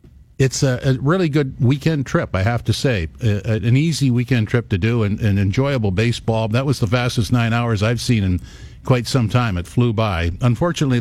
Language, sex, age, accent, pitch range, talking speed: English, male, 50-69, American, 95-130 Hz, 215 wpm